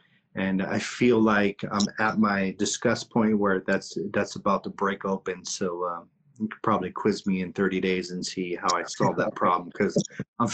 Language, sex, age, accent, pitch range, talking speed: English, male, 30-49, American, 105-145 Hz, 200 wpm